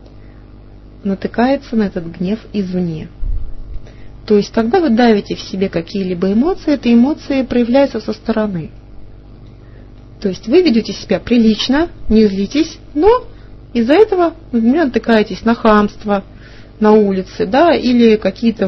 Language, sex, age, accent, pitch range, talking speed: Russian, female, 30-49, native, 180-240 Hz, 120 wpm